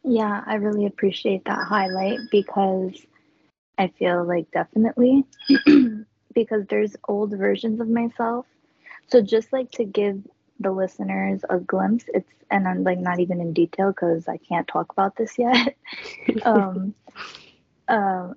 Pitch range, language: 185-220 Hz, English